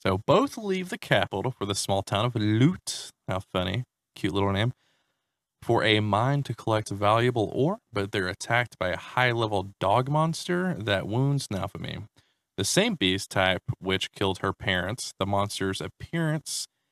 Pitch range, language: 100-135 Hz, English